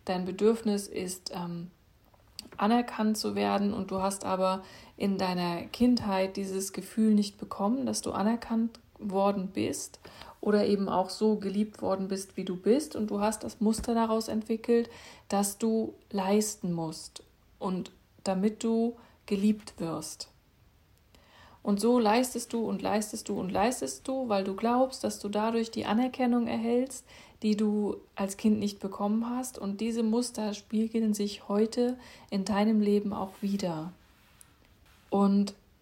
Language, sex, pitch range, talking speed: German, female, 195-220 Hz, 145 wpm